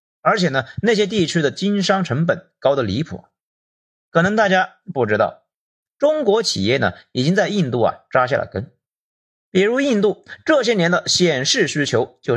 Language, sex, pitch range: Chinese, male, 130-200 Hz